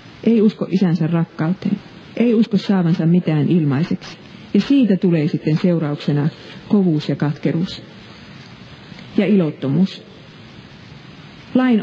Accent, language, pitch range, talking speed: native, Finnish, 160-205 Hz, 100 wpm